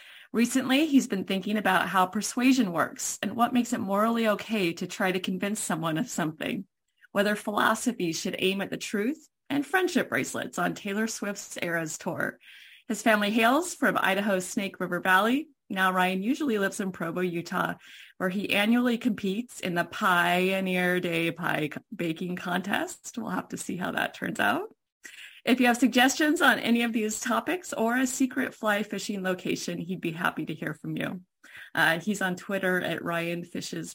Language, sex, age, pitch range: English, female, 30-49, 185-245 Hz